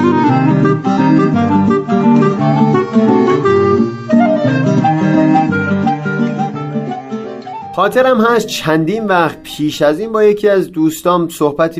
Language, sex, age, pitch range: Persian, male, 30-49, 130-170 Hz